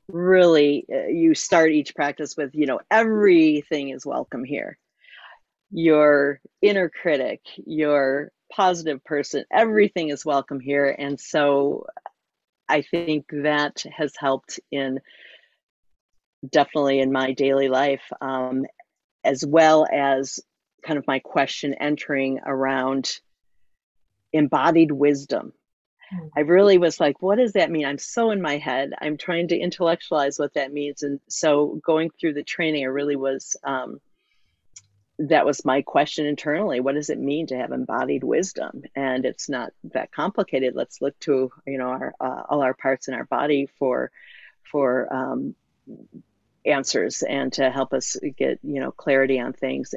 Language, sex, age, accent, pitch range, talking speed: English, female, 40-59, American, 135-160 Hz, 145 wpm